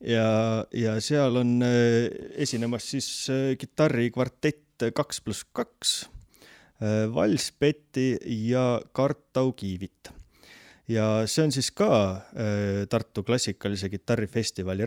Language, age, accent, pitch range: English, 30-49, Finnish, 100-130 Hz